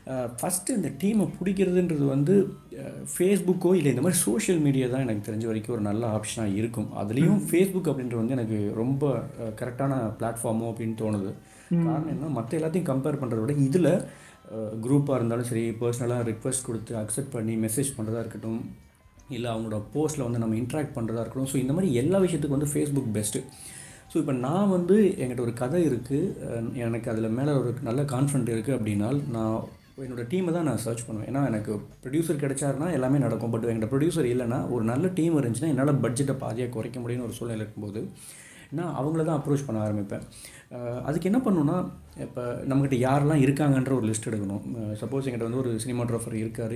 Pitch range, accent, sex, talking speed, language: 110-140 Hz, native, male, 170 wpm, Tamil